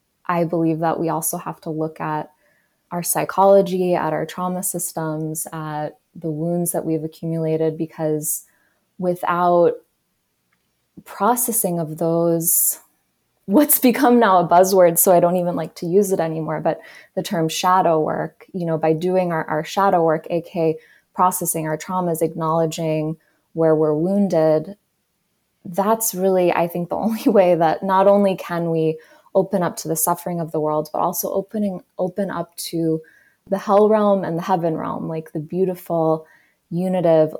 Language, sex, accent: English, female, American